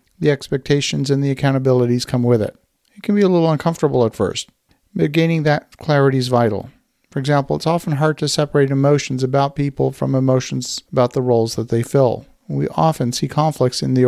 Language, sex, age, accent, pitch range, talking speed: English, male, 50-69, American, 125-150 Hz, 195 wpm